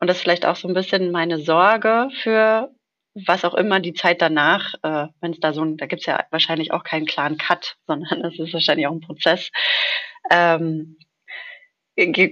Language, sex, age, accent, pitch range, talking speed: German, female, 30-49, German, 165-200 Hz, 195 wpm